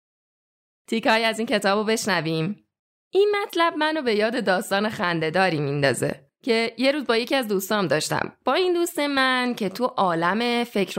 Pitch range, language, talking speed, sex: 175-255 Hz, Persian, 160 wpm, female